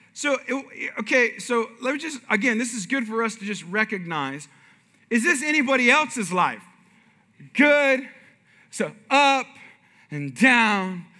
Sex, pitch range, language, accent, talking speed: male, 200-260 Hz, English, American, 135 wpm